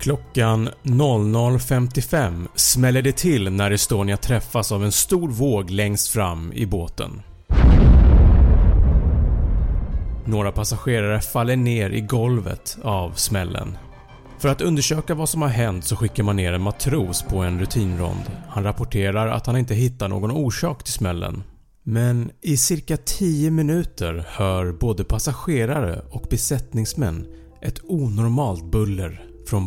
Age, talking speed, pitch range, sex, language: 30-49, 130 wpm, 95-125 Hz, male, Swedish